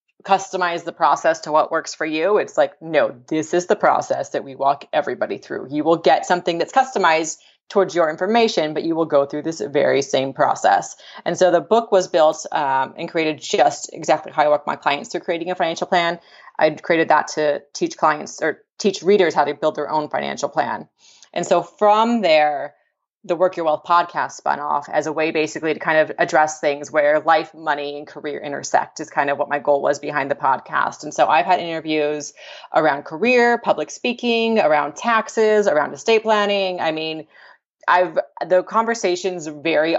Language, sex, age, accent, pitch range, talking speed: English, female, 30-49, American, 155-180 Hz, 195 wpm